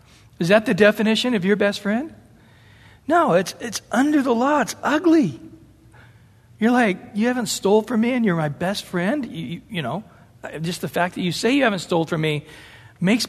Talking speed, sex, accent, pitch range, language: 200 wpm, male, American, 160-230 Hz, English